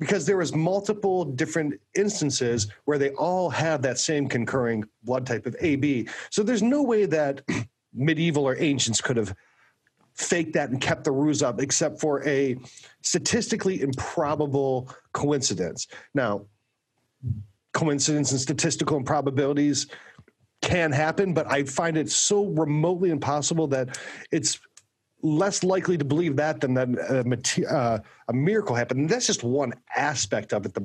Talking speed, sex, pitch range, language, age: 145 wpm, male, 125-160 Hz, English, 40-59